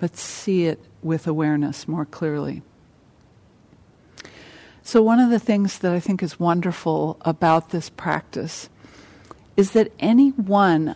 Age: 50-69